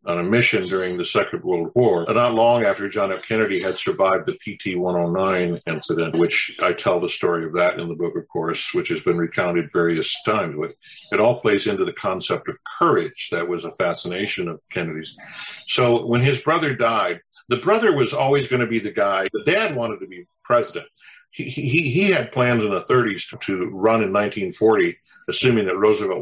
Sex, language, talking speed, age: male, English, 200 wpm, 50-69